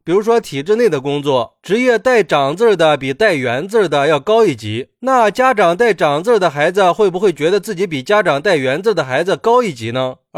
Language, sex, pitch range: Chinese, male, 150-210 Hz